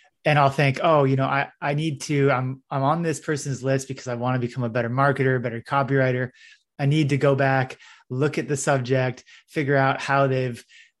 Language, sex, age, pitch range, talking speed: English, male, 30-49, 125-140 Hz, 215 wpm